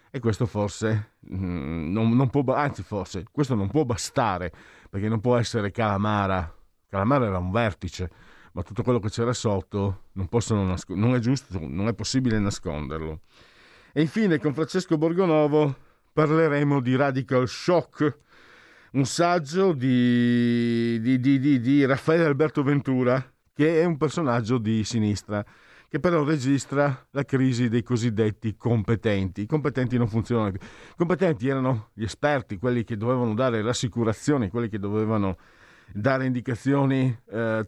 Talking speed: 145 wpm